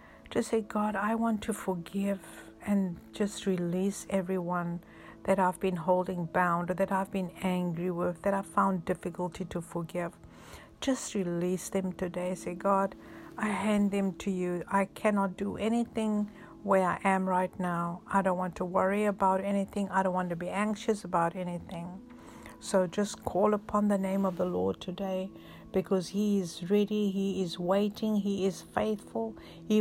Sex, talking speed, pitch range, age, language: female, 165 wpm, 180-210 Hz, 60-79, English